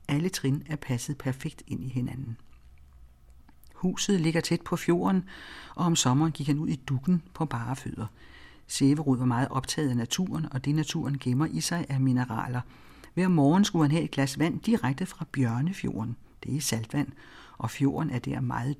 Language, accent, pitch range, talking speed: Danish, native, 125-165 Hz, 180 wpm